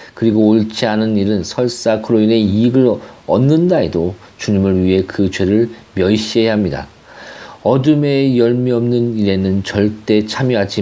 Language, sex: Korean, male